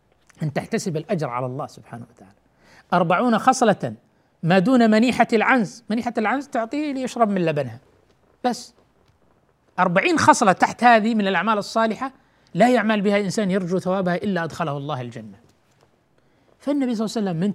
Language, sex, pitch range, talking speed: Arabic, male, 175-245 Hz, 145 wpm